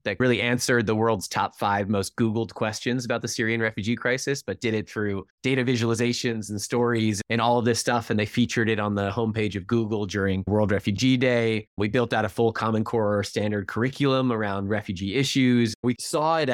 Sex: male